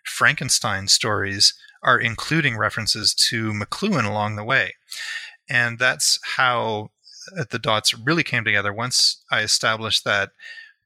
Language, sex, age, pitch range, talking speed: English, male, 30-49, 105-145 Hz, 120 wpm